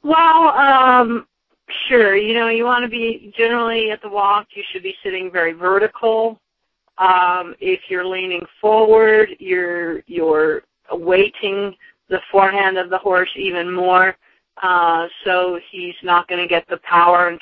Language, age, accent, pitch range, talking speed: English, 40-59, American, 175-220 Hz, 150 wpm